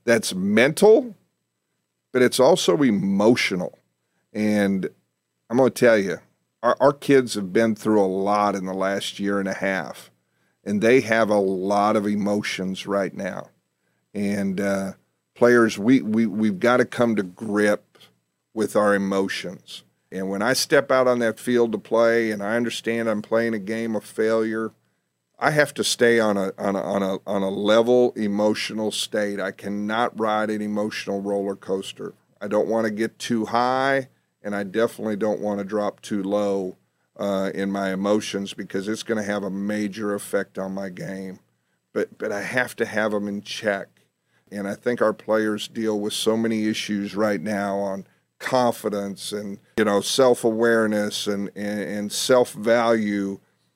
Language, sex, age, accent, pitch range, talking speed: English, male, 50-69, American, 100-115 Hz, 170 wpm